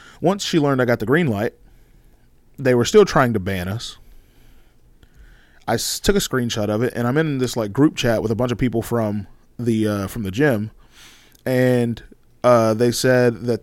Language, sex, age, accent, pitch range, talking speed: English, male, 20-39, American, 110-130 Hz, 200 wpm